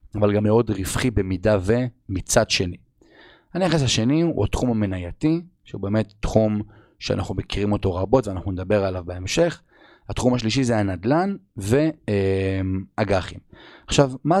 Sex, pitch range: male, 95-125 Hz